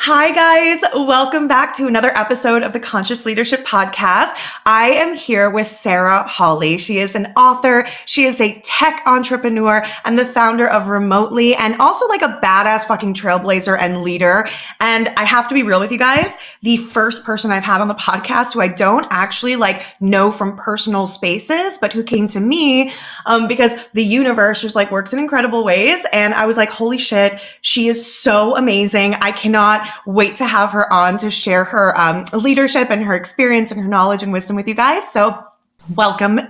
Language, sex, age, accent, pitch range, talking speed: English, female, 20-39, American, 200-250 Hz, 190 wpm